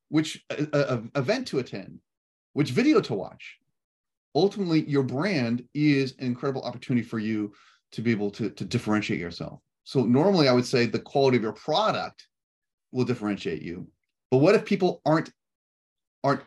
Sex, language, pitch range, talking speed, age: male, English, 125-145 Hz, 155 wpm, 30-49